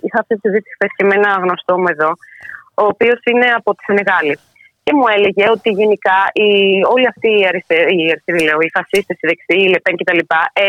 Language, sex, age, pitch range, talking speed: Greek, female, 20-39, 170-225 Hz, 185 wpm